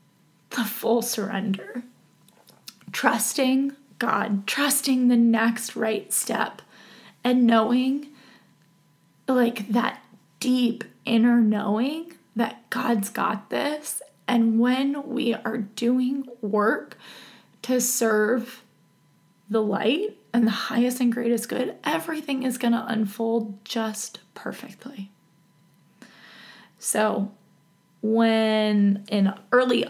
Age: 20-39